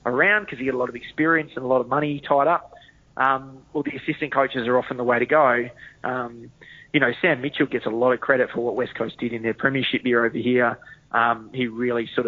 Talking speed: 250 wpm